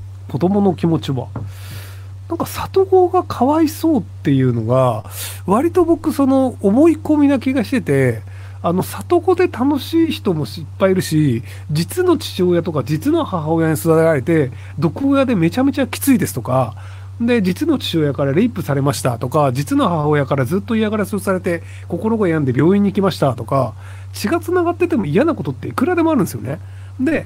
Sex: male